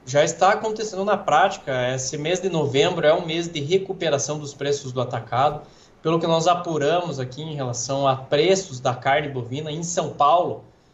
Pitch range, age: 145-200 Hz, 20-39